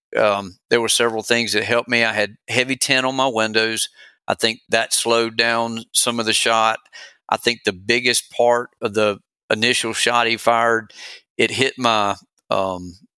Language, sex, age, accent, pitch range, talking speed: English, male, 40-59, American, 110-130 Hz, 180 wpm